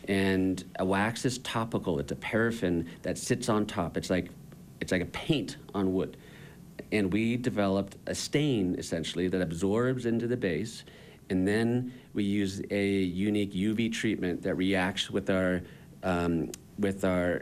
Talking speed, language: 160 wpm, English